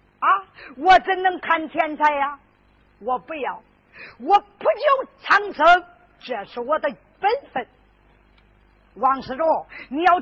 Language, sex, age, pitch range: Chinese, female, 50-69, 290-380 Hz